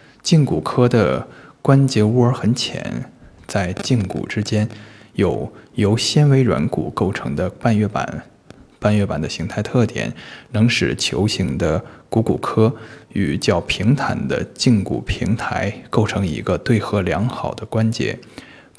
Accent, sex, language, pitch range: native, male, Chinese, 100-130 Hz